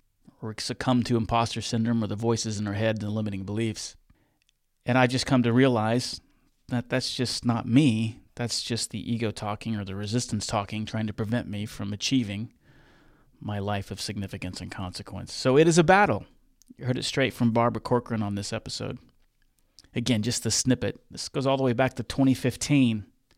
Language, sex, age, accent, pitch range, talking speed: English, male, 30-49, American, 110-130 Hz, 185 wpm